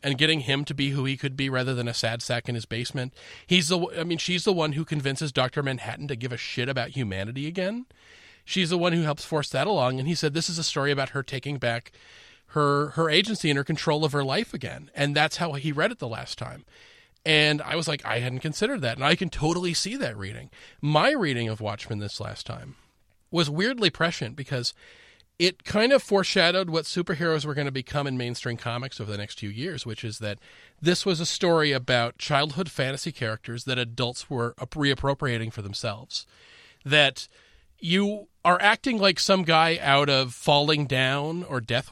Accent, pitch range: American, 130-170 Hz